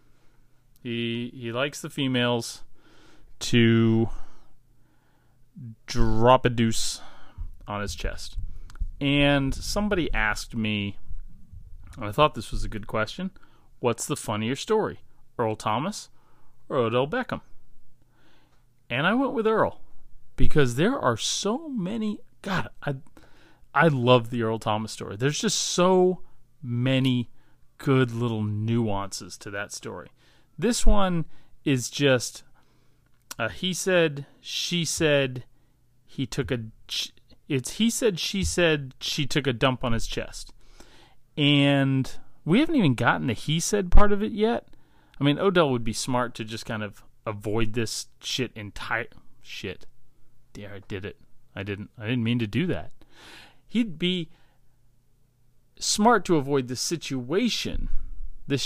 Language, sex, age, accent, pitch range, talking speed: English, male, 30-49, American, 115-150 Hz, 135 wpm